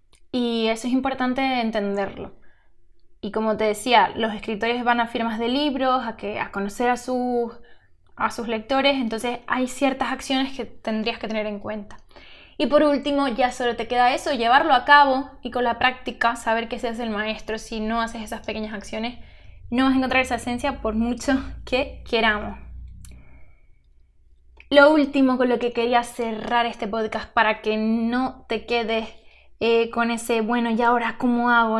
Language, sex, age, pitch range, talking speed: Spanish, female, 10-29, 225-260 Hz, 175 wpm